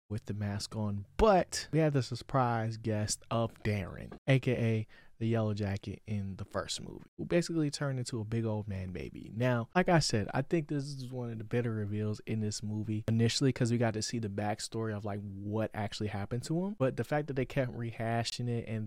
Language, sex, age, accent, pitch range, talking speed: English, male, 20-39, American, 105-125 Hz, 220 wpm